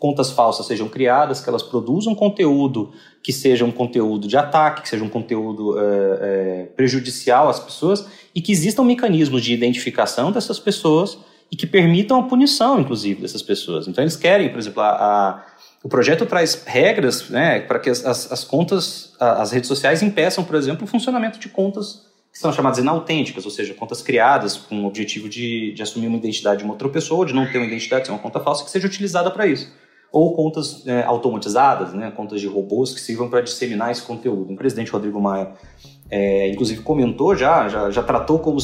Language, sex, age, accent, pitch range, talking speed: Portuguese, male, 30-49, Brazilian, 105-155 Hz, 200 wpm